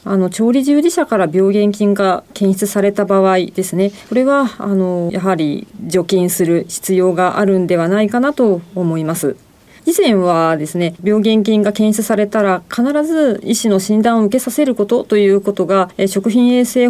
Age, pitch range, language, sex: 40-59, 185-245 Hz, Japanese, female